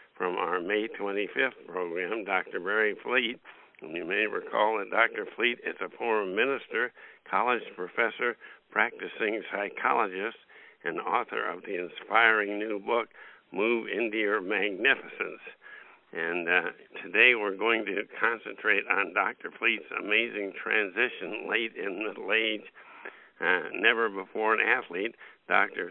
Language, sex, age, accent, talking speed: English, male, 60-79, American, 125 wpm